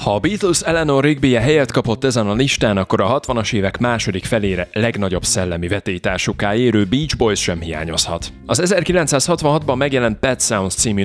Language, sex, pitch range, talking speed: Hungarian, male, 95-130 Hz, 160 wpm